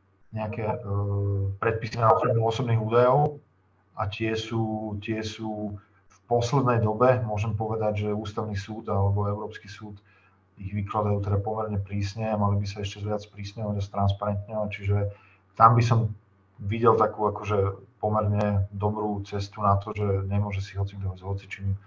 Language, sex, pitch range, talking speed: Slovak, male, 100-110 Hz, 150 wpm